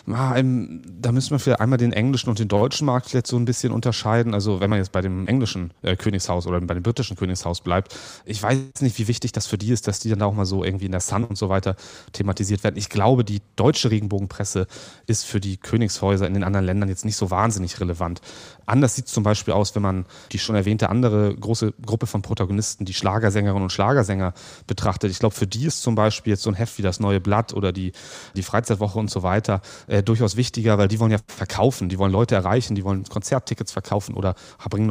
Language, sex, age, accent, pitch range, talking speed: German, male, 30-49, German, 100-115 Hz, 225 wpm